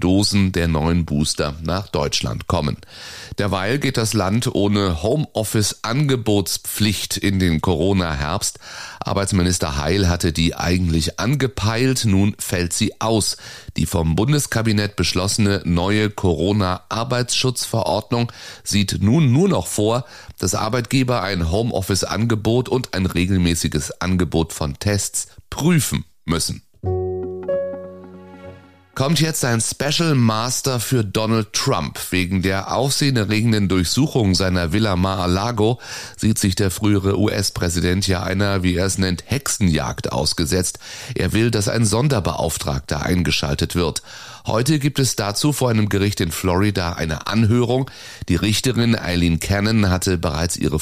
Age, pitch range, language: 30-49, 90-115 Hz, German